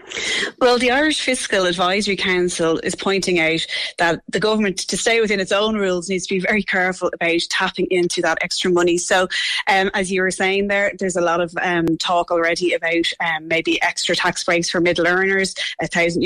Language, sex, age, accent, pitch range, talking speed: English, female, 20-39, Irish, 175-205 Hz, 200 wpm